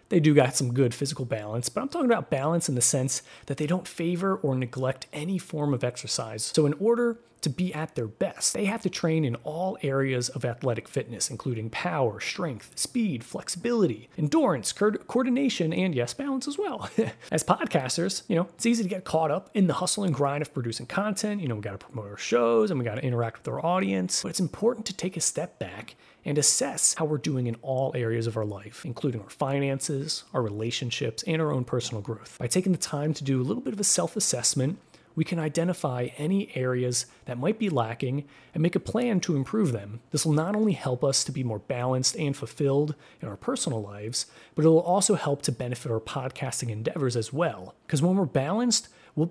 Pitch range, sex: 125-180 Hz, male